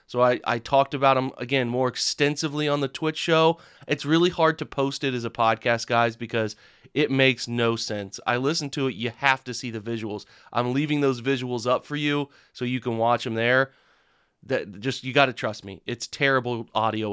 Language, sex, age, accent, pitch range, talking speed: English, male, 30-49, American, 120-135 Hz, 215 wpm